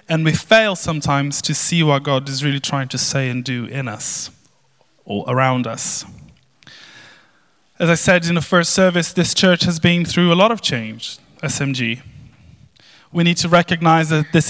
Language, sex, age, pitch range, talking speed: English, male, 20-39, 130-160 Hz, 180 wpm